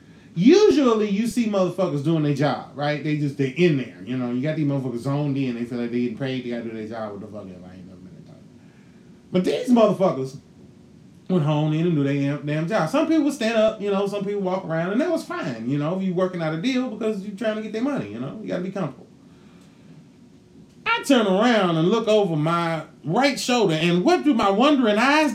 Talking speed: 245 wpm